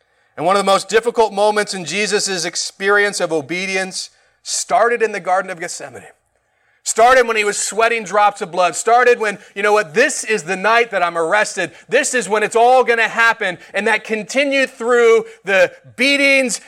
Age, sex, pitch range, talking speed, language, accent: 30-49, male, 190-240 Hz, 185 wpm, English, American